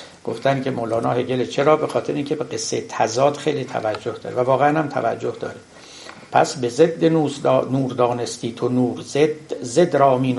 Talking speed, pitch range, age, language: 175 wpm, 125-155 Hz, 60-79, Persian